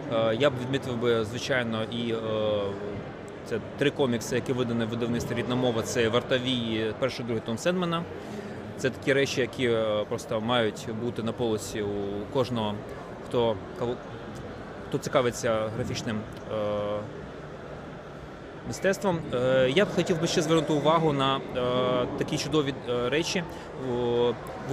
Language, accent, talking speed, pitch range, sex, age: Ukrainian, native, 135 wpm, 120-145 Hz, male, 30-49